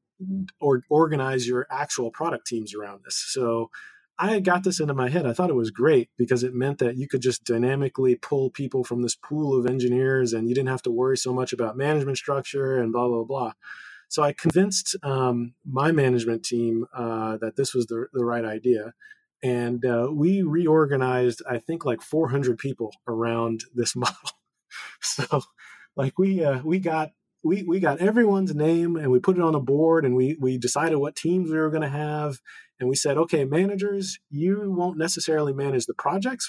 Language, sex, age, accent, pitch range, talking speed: English, male, 20-39, American, 125-165 Hz, 195 wpm